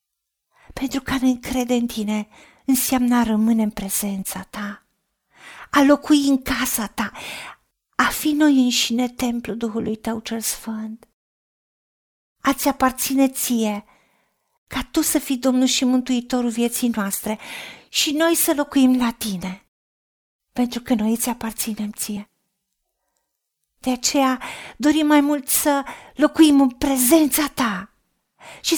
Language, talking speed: Romanian, 125 wpm